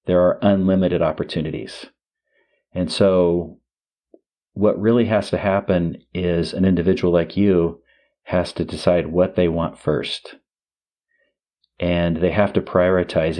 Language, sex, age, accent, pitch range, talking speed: English, male, 40-59, American, 85-95 Hz, 125 wpm